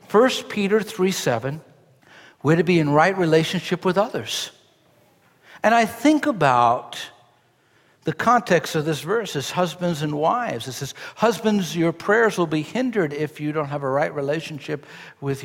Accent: American